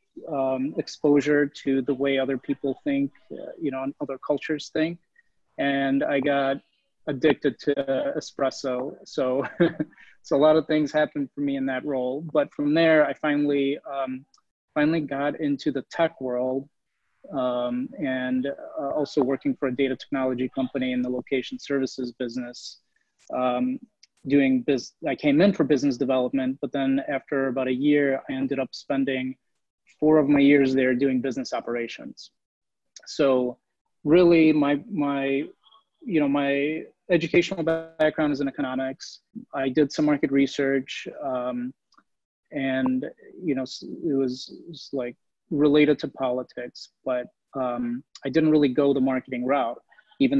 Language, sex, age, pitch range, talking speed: English, male, 30-49, 130-150 Hz, 150 wpm